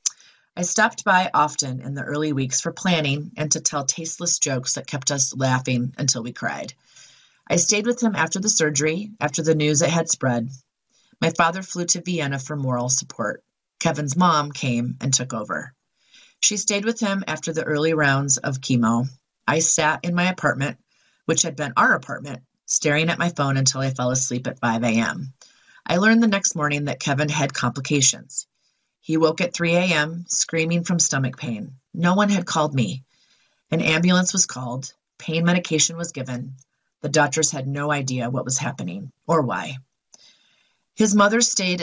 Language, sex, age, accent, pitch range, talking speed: English, female, 30-49, American, 130-170 Hz, 180 wpm